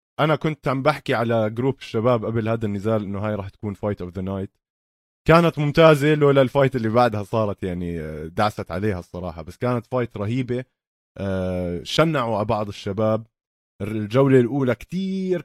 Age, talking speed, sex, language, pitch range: 20-39, 155 wpm, male, Arabic, 100-125 Hz